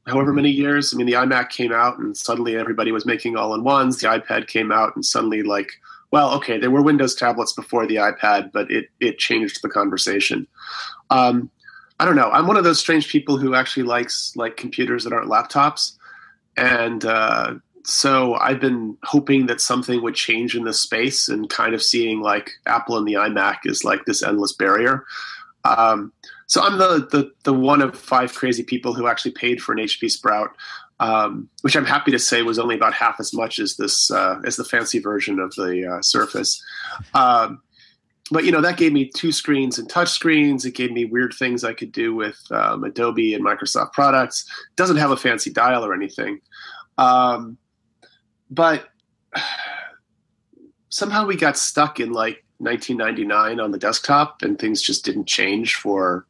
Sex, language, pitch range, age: male, English, 115-160 Hz, 30-49